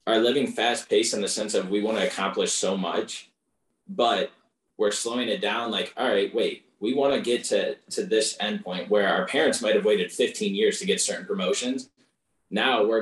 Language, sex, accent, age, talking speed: English, male, American, 20-39, 205 wpm